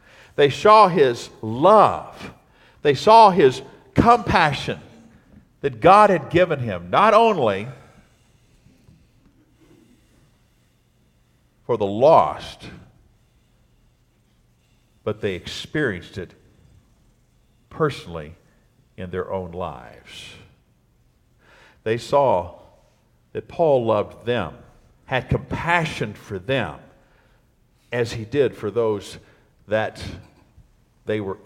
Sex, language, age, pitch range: male, English, 50-69, 100-145 Hz